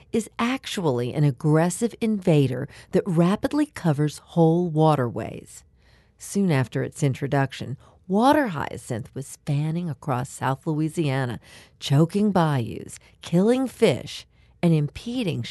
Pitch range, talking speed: 135-215 Hz, 105 wpm